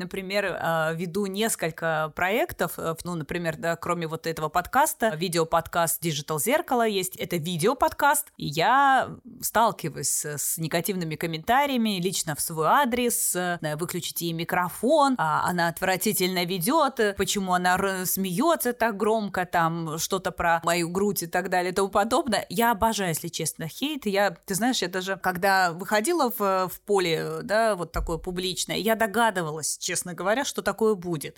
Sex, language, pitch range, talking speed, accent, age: female, Russian, 175-215 Hz, 145 wpm, native, 20-39